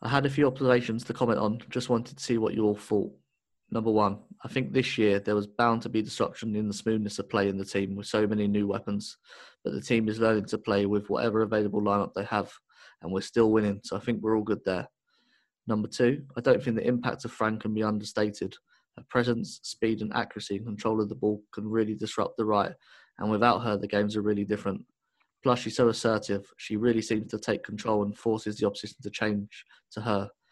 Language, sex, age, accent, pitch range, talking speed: English, male, 20-39, British, 105-115 Hz, 230 wpm